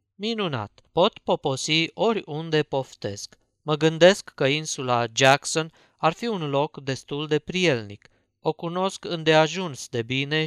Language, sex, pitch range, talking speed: Romanian, male, 125-160 Hz, 125 wpm